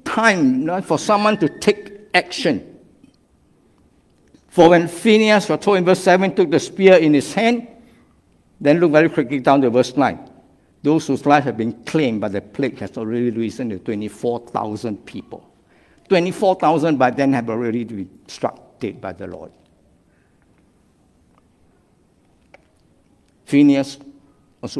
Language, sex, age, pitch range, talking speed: English, male, 60-79, 115-165 Hz, 140 wpm